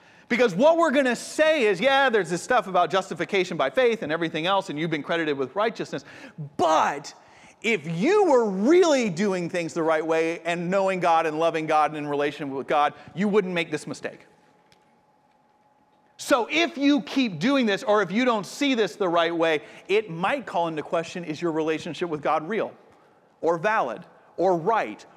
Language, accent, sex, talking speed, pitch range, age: English, American, male, 190 wpm, 165-230 Hz, 40-59